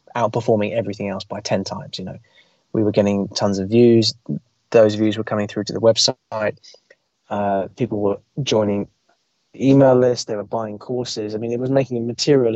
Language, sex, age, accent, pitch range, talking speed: English, male, 20-39, British, 105-135 Hz, 180 wpm